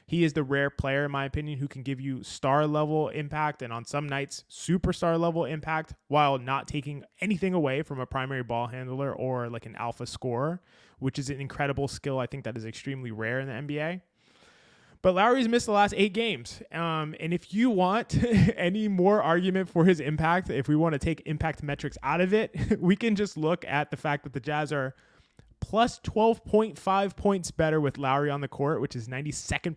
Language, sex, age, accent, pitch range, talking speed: English, male, 20-39, American, 140-185 Hz, 205 wpm